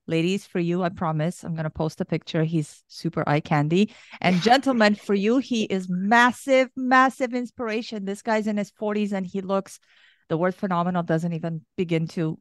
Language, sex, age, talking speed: English, female, 40-59, 190 wpm